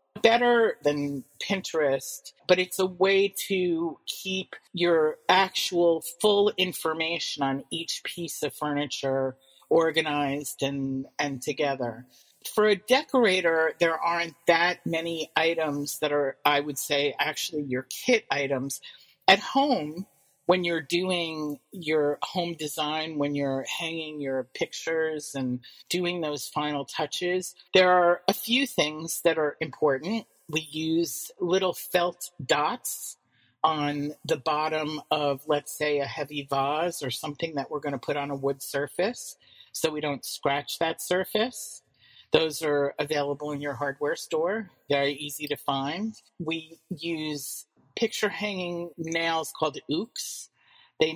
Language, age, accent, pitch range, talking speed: English, 40-59, American, 145-175 Hz, 135 wpm